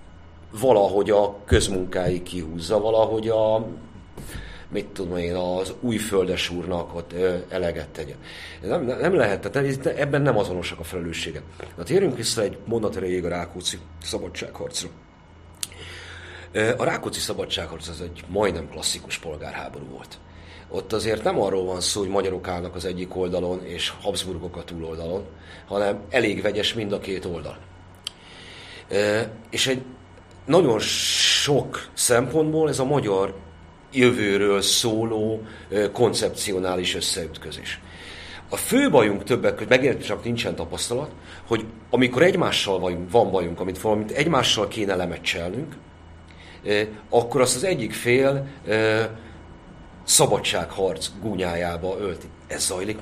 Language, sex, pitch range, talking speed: Hungarian, male, 85-105 Hz, 115 wpm